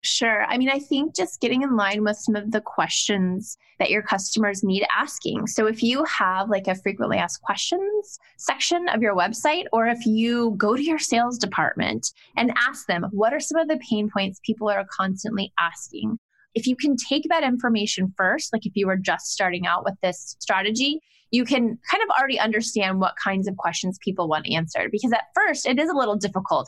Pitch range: 200-255 Hz